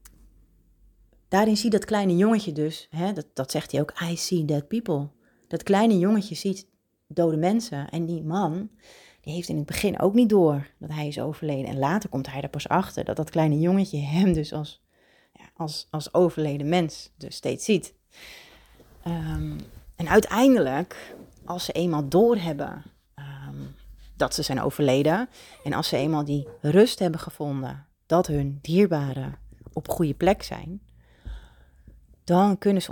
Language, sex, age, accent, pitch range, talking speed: Dutch, female, 30-49, Dutch, 140-180 Hz, 165 wpm